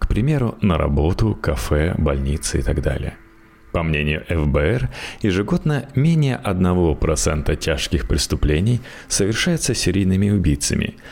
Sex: male